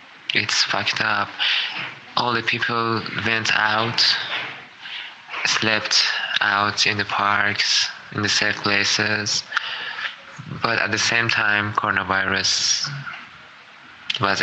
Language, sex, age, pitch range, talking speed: Urdu, male, 20-39, 105-130 Hz, 100 wpm